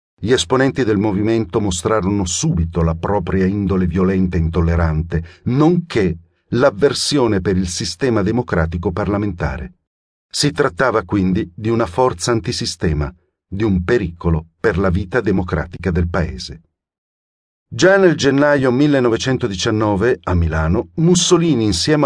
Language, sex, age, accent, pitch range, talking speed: Italian, male, 50-69, native, 90-130 Hz, 115 wpm